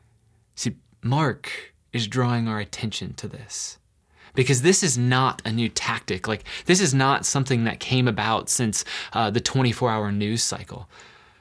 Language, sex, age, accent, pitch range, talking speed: English, male, 20-39, American, 115-150 Hz, 145 wpm